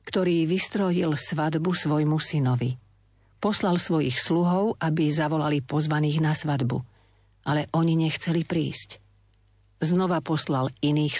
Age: 50-69